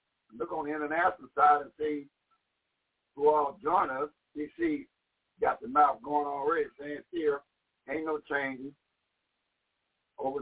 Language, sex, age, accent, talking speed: English, male, 60-79, American, 140 wpm